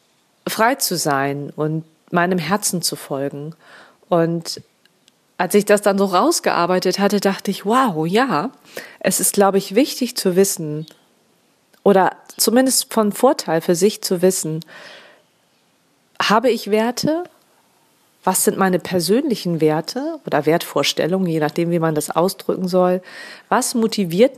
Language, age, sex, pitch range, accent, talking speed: German, 30-49, female, 180-225 Hz, German, 135 wpm